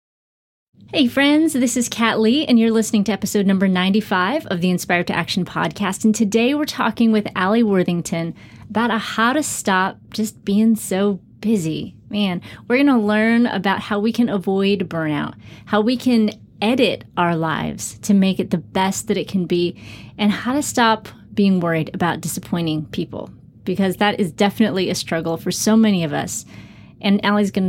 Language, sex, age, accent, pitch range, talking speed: English, female, 30-49, American, 175-215 Hz, 180 wpm